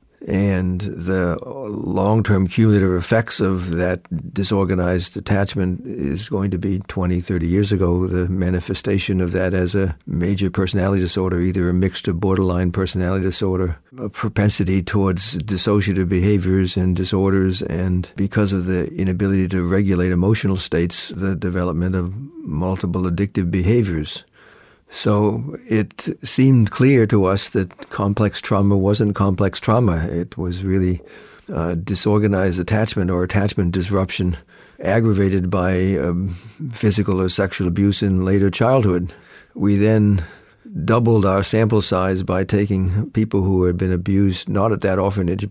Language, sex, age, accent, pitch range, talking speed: English, male, 60-79, American, 90-100 Hz, 135 wpm